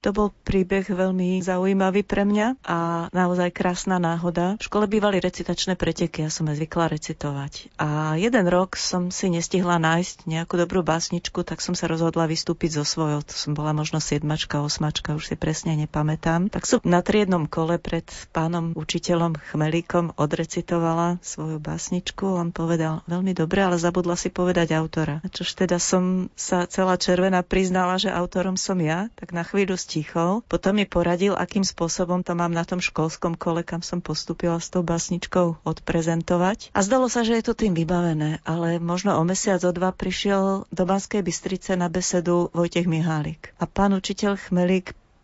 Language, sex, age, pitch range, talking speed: Slovak, female, 40-59, 165-185 Hz, 170 wpm